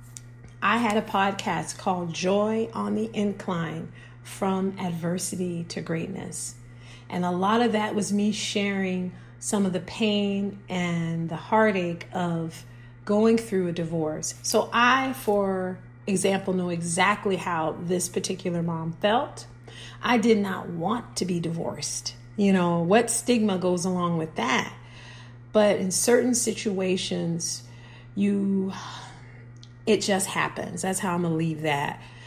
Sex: female